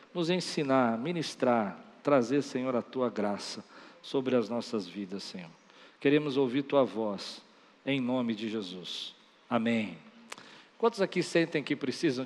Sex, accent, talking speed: male, Brazilian, 130 wpm